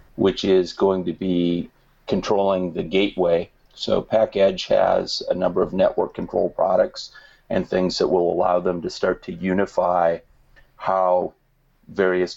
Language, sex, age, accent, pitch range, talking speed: English, male, 40-59, American, 90-115 Hz, 140 wpm